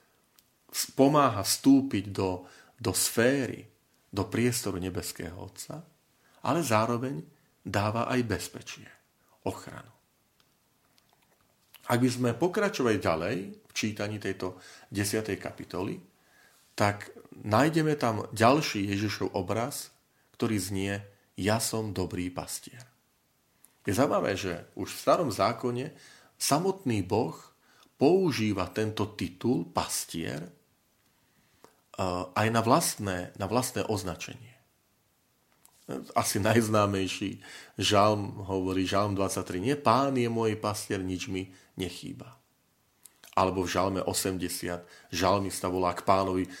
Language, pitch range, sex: Slovak, 95-130 Hz, male